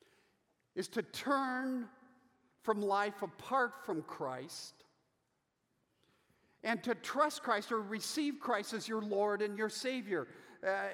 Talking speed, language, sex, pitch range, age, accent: 120 wpm, English, male, 210-255 Hz, 50-69, American